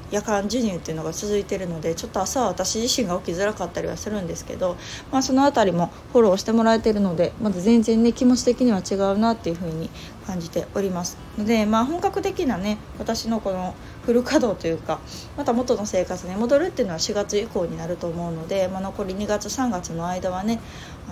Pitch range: 185-225 Hz